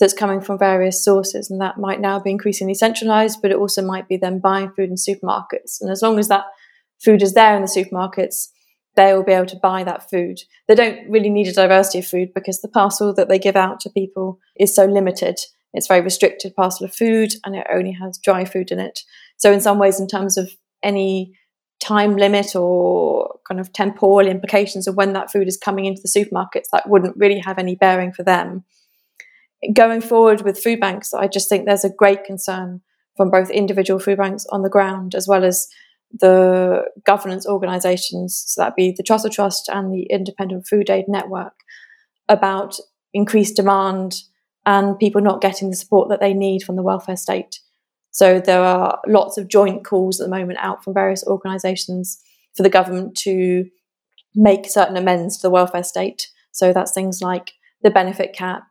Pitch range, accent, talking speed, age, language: 185-205 Hz, British, 200 wpm, 20-39, English